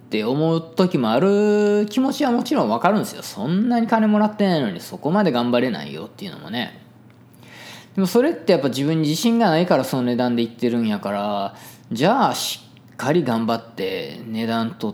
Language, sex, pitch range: Japanese, male, 120-200 Hz